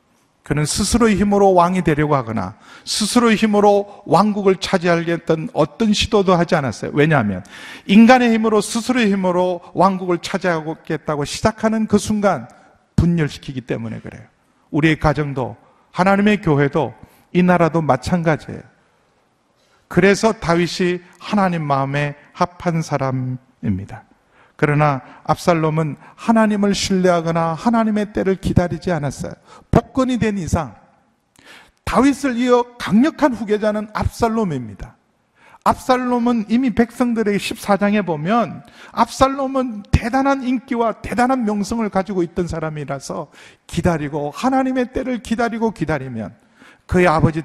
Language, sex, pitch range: Korean, male, 155-220 Hz